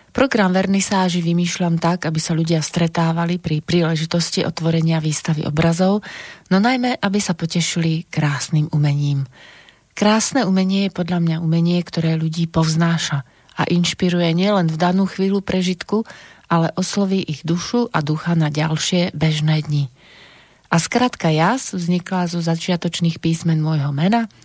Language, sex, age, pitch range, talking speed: Slovak, female, 30-49, 160-185 Hz, 135 wpm